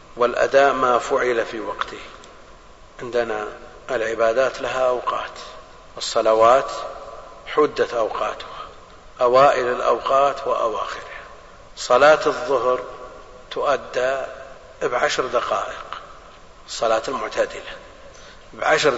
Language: Arabic